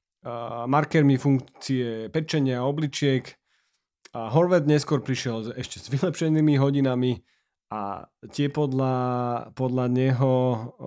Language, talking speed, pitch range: Slovak, 90 wpm, 125-150 Hz